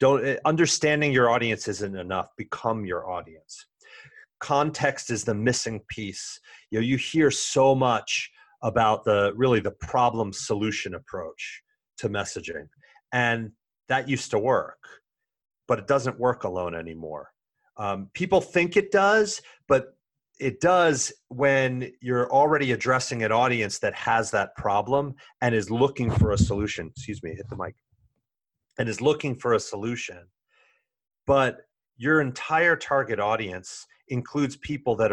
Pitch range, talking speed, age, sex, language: 110-140 Hz, 135 wpm, 30-49, male, English